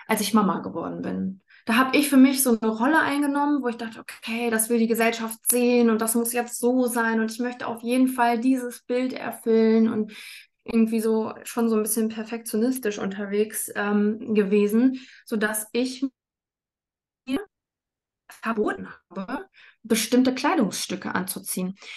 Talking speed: 155 wpm